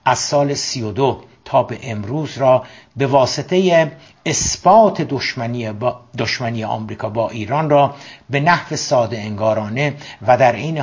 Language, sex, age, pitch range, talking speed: Persian, male, 60-79, 120-145 Hz, 135 wpm